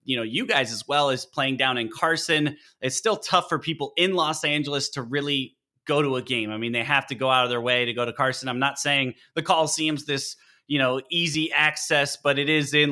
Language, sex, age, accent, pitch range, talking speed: English, male, 20-39, American, 125-150 Hz, 245 wpm